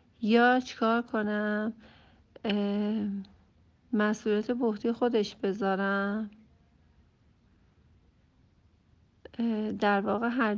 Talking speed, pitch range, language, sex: 55 wpm, 195-235 Hz, Persian, female